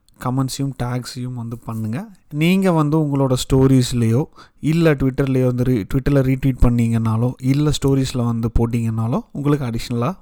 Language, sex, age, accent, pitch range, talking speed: Tamil, male, 30-49, native, 125-160 Hz, 115 wpm